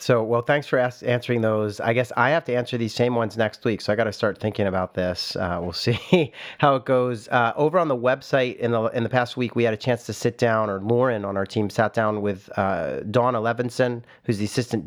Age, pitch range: 40-59, 105-125 Hz